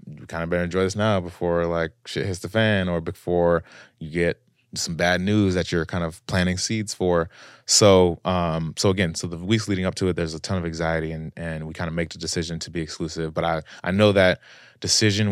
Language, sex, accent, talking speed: English, male, American, 235 wpm